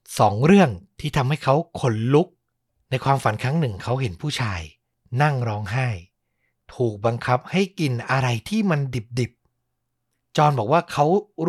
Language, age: Thai, 60-79